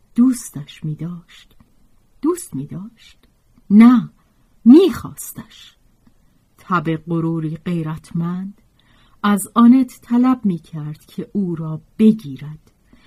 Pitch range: 160-235 Hz